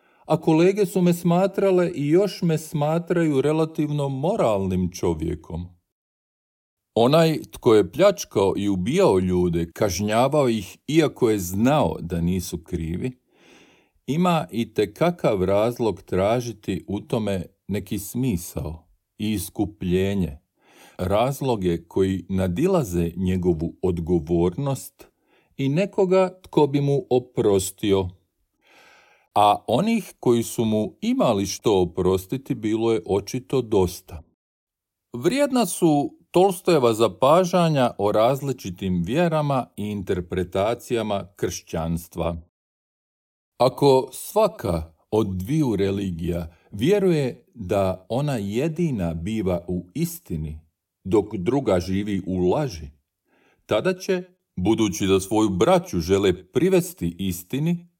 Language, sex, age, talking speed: Croatian, male, 50-69, 100 wpm